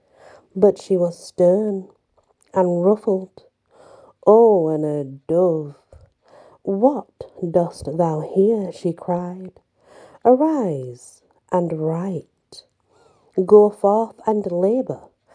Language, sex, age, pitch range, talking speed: English, female, 50-69, 170-210 Hz, 90 wpm